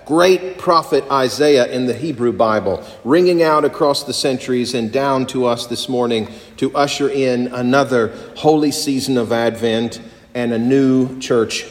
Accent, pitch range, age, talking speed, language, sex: American, 125-155 Hz, 40-59, 155 wpm, English, male